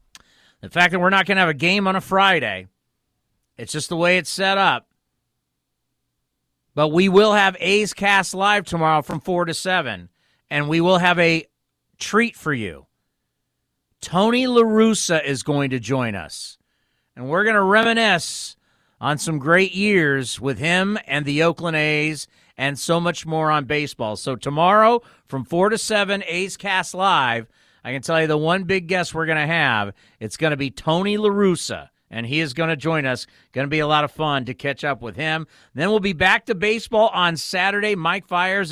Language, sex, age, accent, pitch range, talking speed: English, male, 40-59, American, 140-190 Hz, 190 wpm